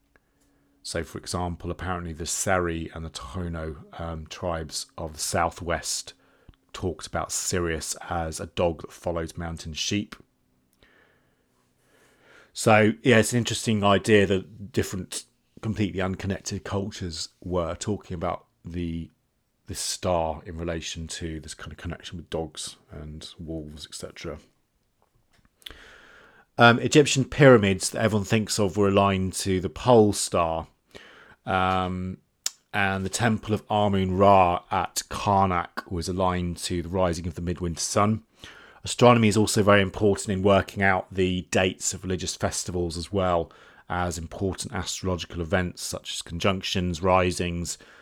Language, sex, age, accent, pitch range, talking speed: English, male, 40-59, British, 85-100 Hz, 130 wpm